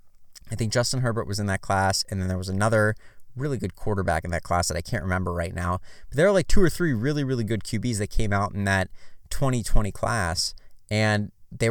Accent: American